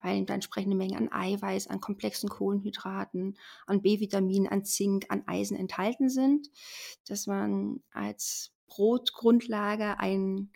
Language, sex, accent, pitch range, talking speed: German, female, German, 185-220 Hz, 120 wpm